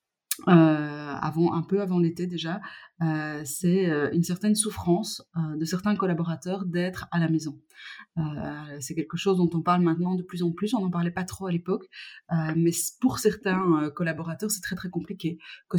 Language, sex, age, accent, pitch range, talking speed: French, female, 30-49, French, 170-210 Hz, 190 wpm